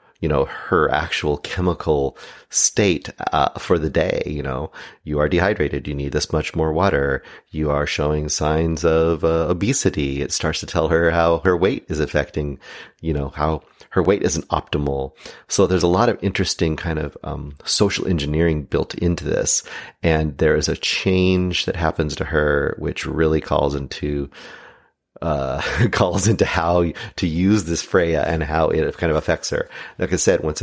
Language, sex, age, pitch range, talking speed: English, male, 30-49, 75-85 Hz, 180 wpm